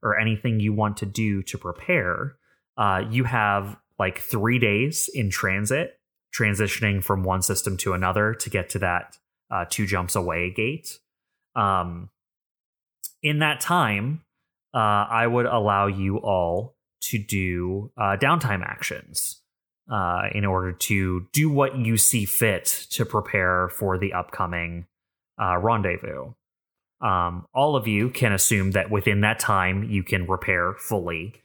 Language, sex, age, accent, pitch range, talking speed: English, male, 20-39, American, 95-115 Hz, 145 wpm